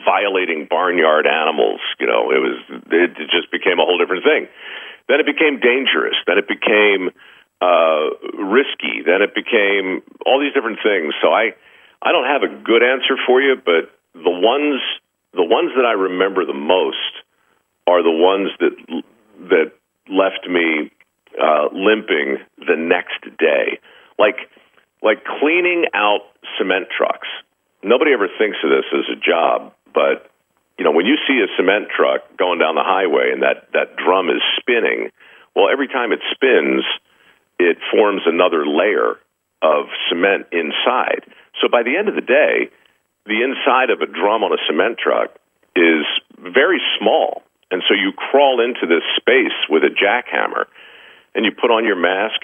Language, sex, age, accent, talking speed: English, male, 50-69, American, 160 wpm